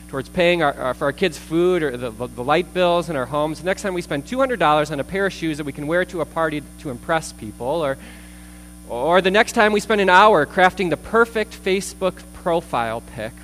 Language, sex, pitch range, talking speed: English, male, 115-175 Hz, 230 wpm